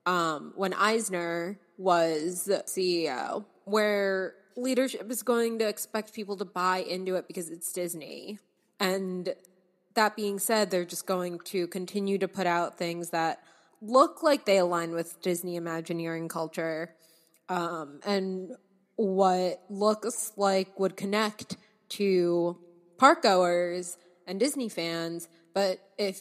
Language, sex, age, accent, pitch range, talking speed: English, female, 20-39, American, 170-195 Hz, 130 wpm